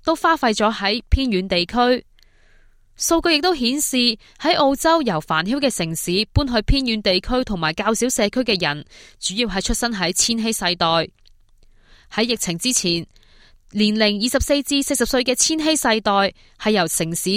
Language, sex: Chinese, female